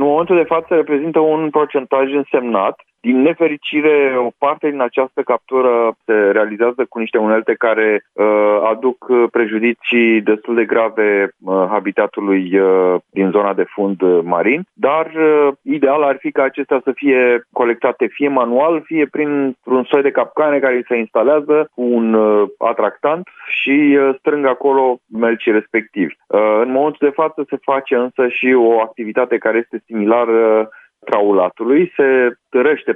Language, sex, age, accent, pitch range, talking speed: Romanian, male, 30-49, native, 110-140 Hz, 140 wpm